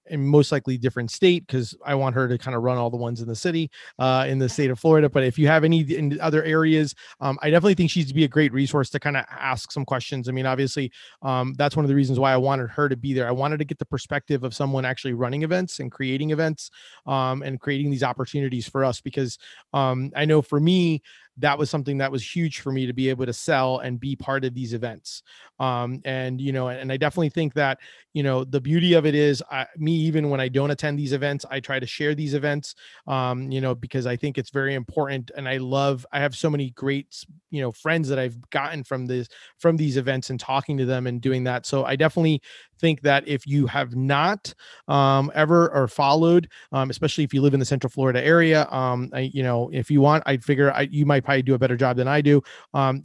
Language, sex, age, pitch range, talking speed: English, male, 30-49, 130-150 Hz, 245 wpm